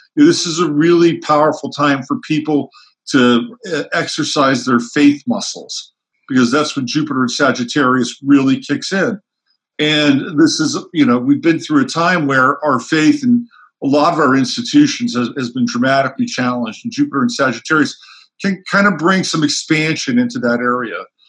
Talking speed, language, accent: 165 wpm, English, American